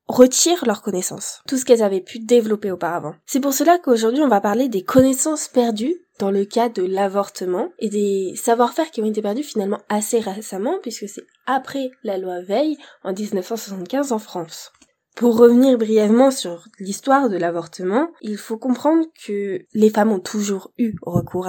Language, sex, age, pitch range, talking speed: French, female, 20-39, 195-240 Hz, 175 wpm